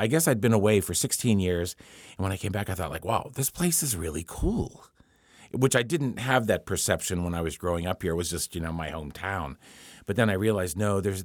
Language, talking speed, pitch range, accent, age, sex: English, 250 wpm, 85-120 Hz, American, 50-69, male